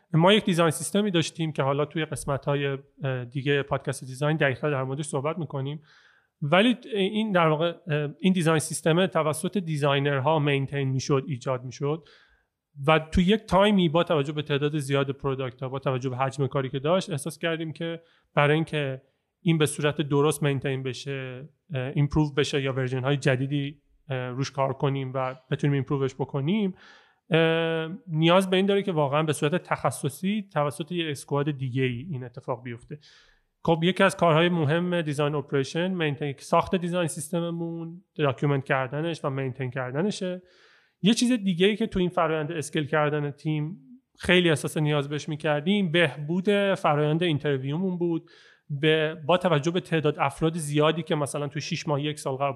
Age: 30-49